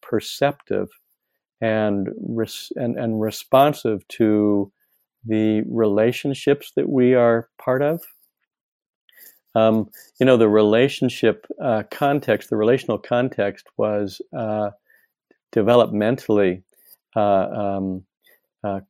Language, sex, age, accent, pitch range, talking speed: English, male, 50-69, American, 105-125 Hz, 95 wpm